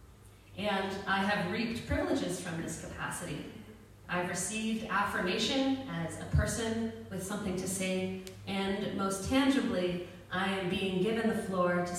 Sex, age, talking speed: female, 30-49, 140 wpm